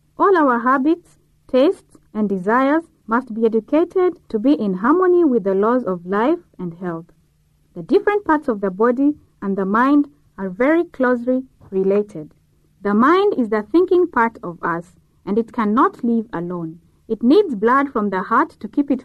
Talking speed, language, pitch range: 175 wpm, English, 195-290 Hz